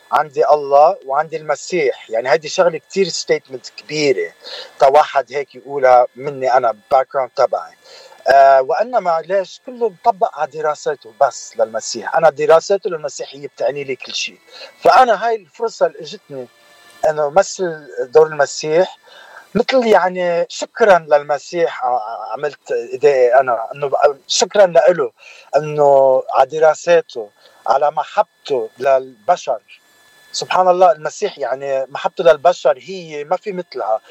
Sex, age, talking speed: male, 50-69, 120 wpm